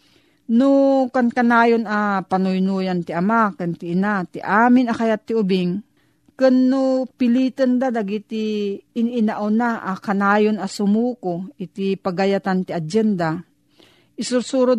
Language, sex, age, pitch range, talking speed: Filipino, female, 40-59, 185-235 Hz, 135 wpm